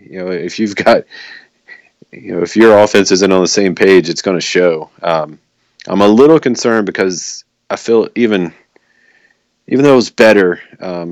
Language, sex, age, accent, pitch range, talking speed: English, male, 30-49, American, 85-100 Hz, 185 wpm